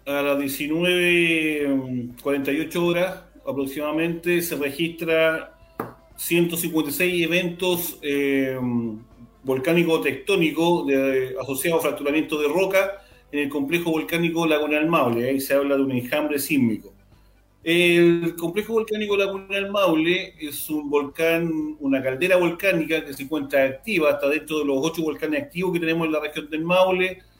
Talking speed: 135 wpm